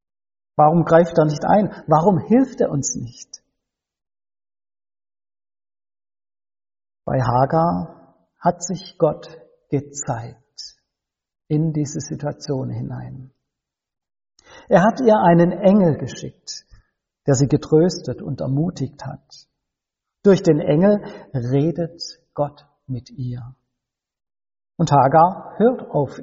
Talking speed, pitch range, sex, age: 100 wpm, 125-170 Hz, male, 60-79